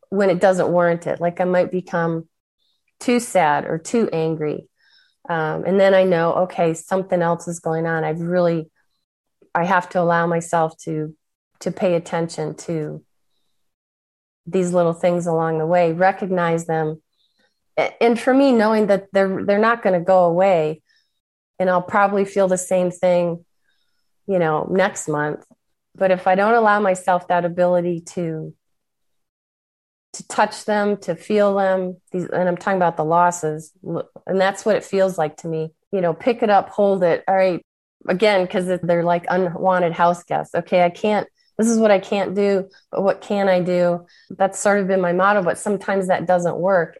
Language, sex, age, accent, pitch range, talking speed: English, female, 30-49, American, 165-195 Hz, 175 wpm